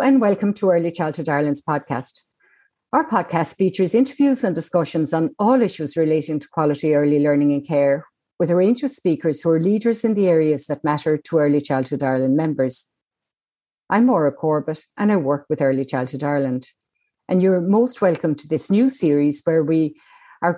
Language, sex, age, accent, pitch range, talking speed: English, female, 50-69, Irish, 145-180 Hz, 180 wpm